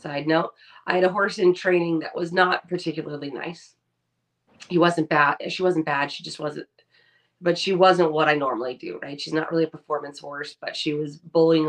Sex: female